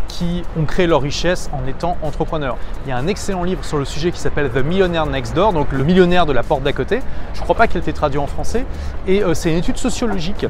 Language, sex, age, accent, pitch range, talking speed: French, male, 20-39, French, 145-190 Hz, 285 wpm